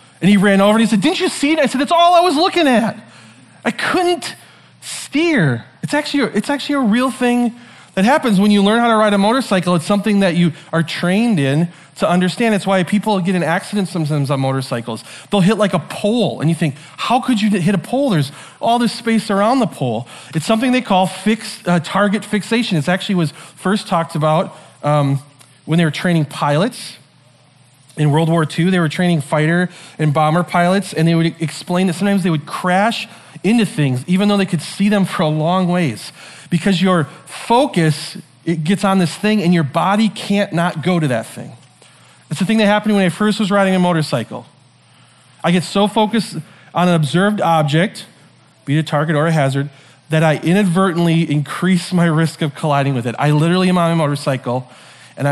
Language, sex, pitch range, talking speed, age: English, male, 155-210 Hz, 205 wpm, 30-49